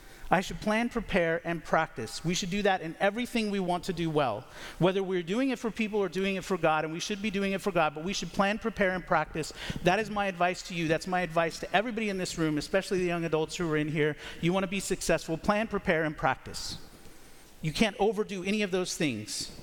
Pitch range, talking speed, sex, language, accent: 155-205 Hz, 250 wpm, male, English, American